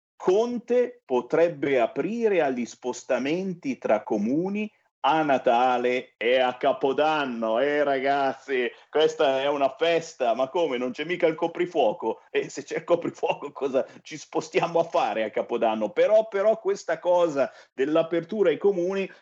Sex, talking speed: male, 135 wpm